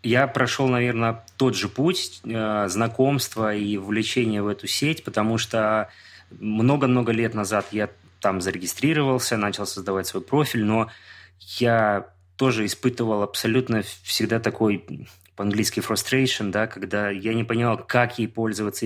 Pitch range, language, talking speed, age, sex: 105-125 Hz, Russian, 130 wpm, 20-39, male